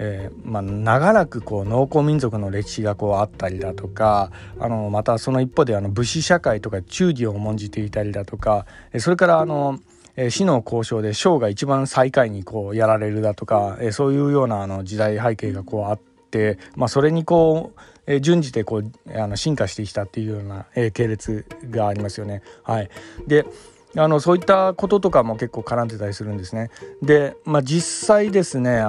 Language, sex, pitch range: Japanese, male, 105-160 Hz